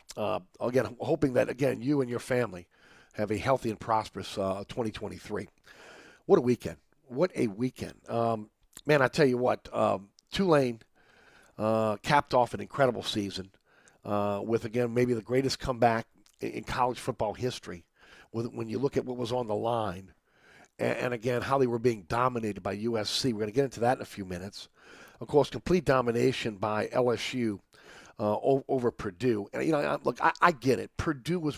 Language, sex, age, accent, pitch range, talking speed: English, male, 50-69, American, 105-130 Hz, 185 wpm